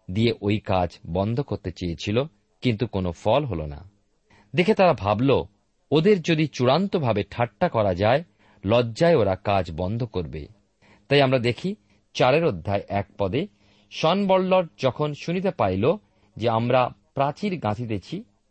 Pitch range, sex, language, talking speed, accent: 100-150 Hz, male, Bengali, 130 wpm, native